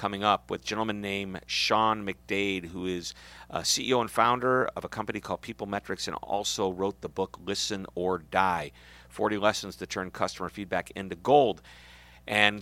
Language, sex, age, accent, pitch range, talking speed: English, male, 50-69, American, 90-120 Hz, 170 wpm